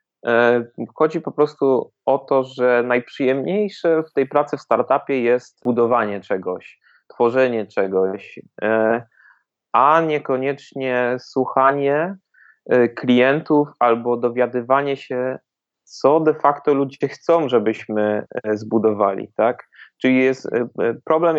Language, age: Polish, 30-49